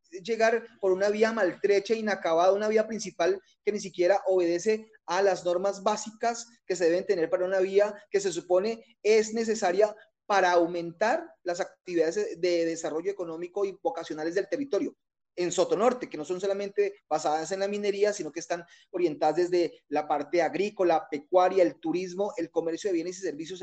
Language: Spanish